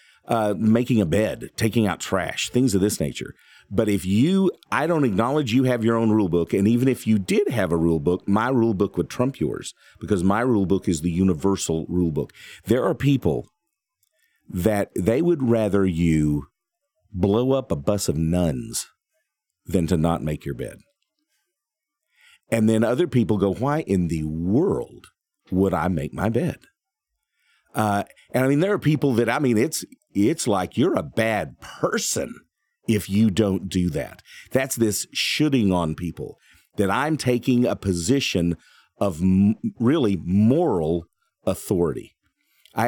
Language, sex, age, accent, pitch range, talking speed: English, male, 50-69, American, 90-125 Hz, 165 wpm